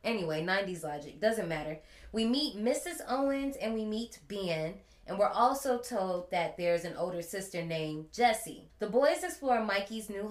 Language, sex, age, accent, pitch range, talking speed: English, female, 20-39, American, 160-210 Hz, 170 wpm